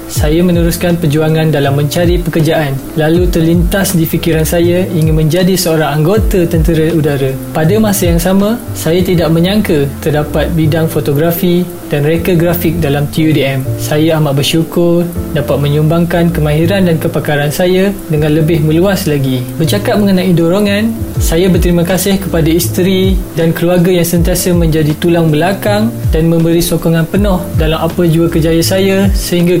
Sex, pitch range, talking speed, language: male, 160-180 Hz, 140 wpm, Malay